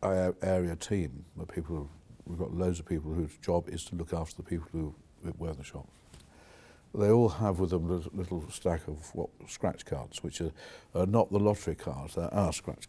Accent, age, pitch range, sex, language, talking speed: British, 60-79, 80-90 Hz, male, English, 210 wpm